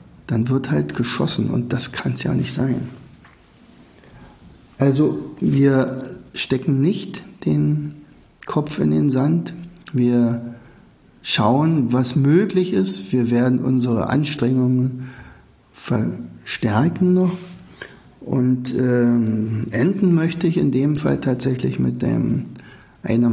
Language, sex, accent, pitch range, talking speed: German, male, German, 115-140 Hz, 110 wpm